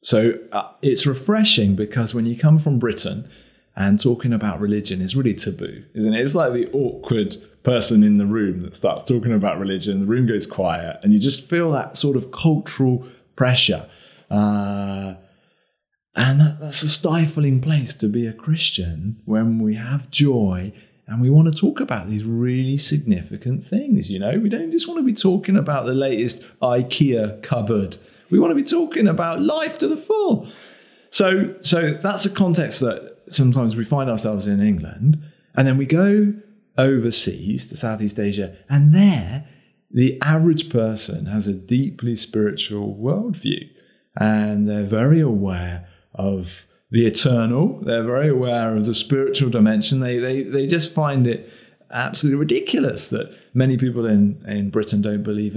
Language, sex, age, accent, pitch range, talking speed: English, male, 30-49, British, 105-155 Hz, 165 wpm